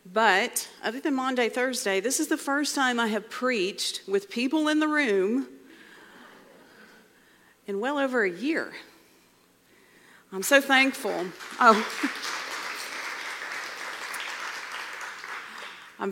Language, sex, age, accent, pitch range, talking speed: English, female, 40-59, American, 185-235 Hz, 100 wpm